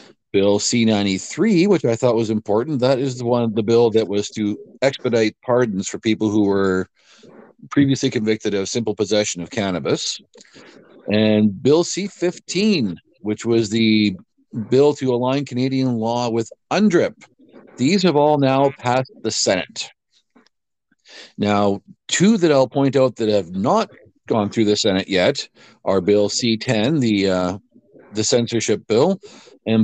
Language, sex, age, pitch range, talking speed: English, male, 50-69, 105-135 Hz, 145 wpm